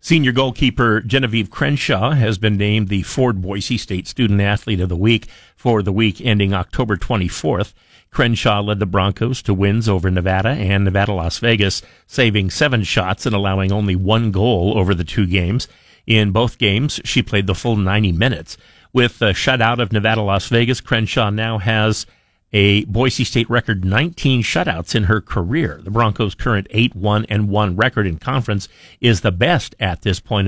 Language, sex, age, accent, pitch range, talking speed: English, male, 50-69, American, 100-120 Hz, 165 wpm